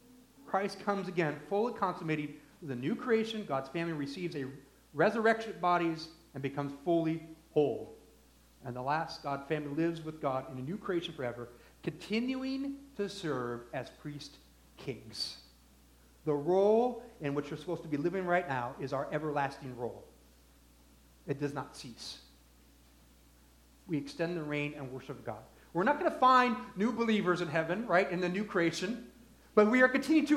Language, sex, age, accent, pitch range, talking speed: English, male, 40-59, American, 125-185 Hz, 165 wpm